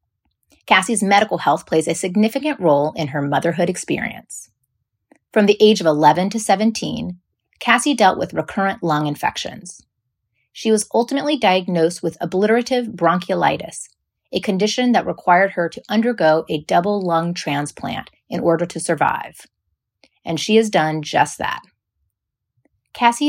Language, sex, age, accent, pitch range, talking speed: English, female, 30-49, American, 155-215 Hz, 135 wpm